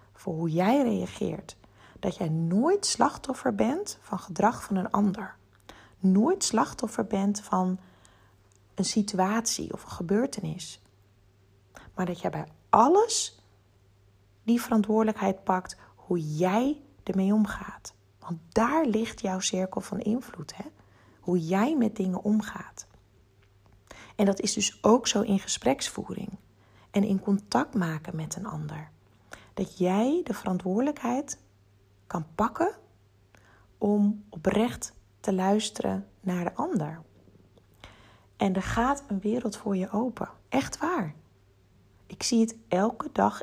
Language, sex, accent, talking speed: Dutch, female, Dutch, 125 wpm